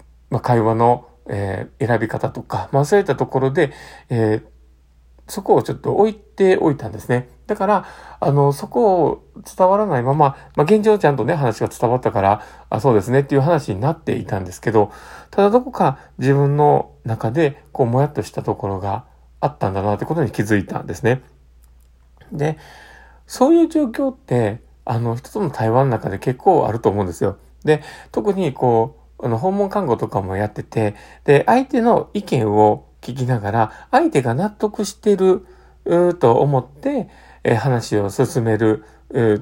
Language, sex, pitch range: Japanese, male, 110-160 Hz